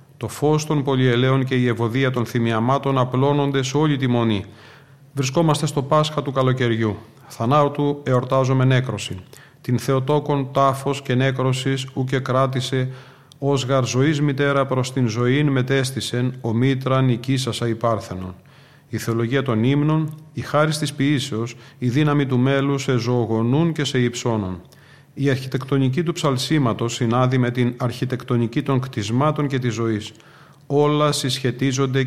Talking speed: 135 wpm